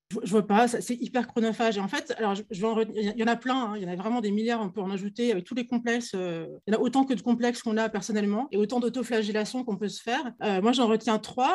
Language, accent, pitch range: English, French, 205-250 Hz